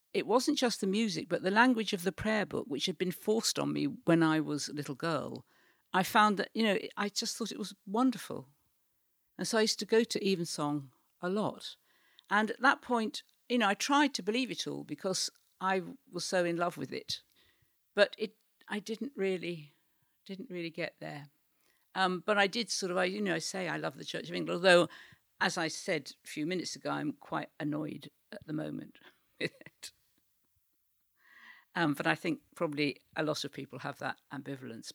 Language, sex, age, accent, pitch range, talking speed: English, female, 50-69, British, 160-215 Hz, 205 wpm